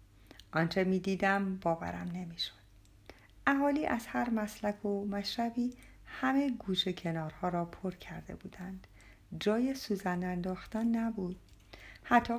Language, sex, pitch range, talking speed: Persian, female, 160-235 Hz, 110 wpm